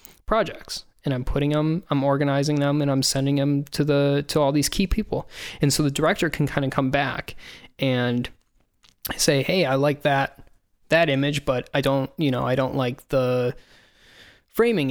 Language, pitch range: English, 135-160 Hz